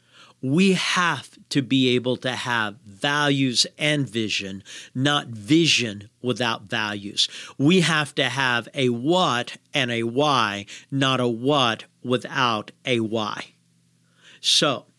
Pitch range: 120-155 Hz